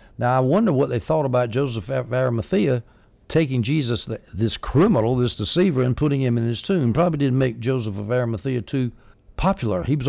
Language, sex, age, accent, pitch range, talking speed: English, male, 60-79, American, 115-145 Hz, 190 wpm